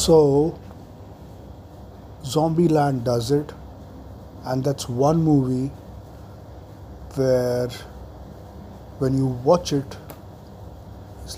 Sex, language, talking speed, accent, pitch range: male, English, 75 wpm, Indian, 100-140 Hz